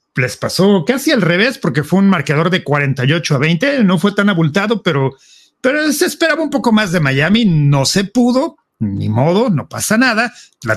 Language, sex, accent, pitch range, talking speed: English, male, Mexican, 150-215 Hz, 195 wpm